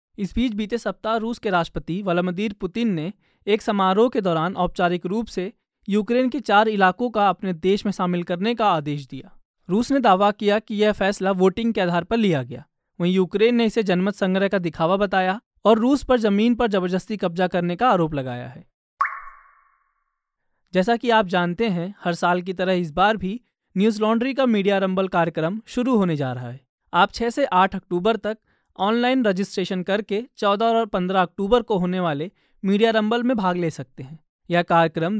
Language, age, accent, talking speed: Hindi, 20-39, native, 190 wpm